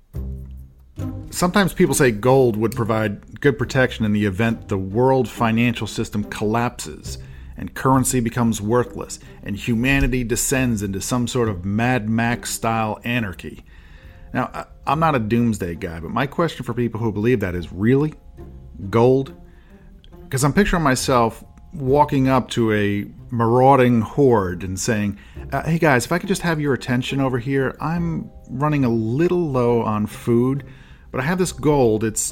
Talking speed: 160 wpm